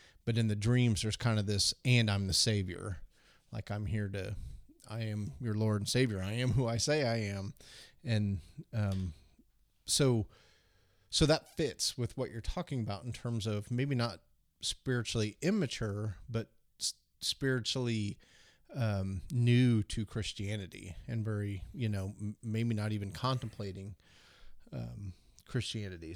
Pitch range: 100-120 Hz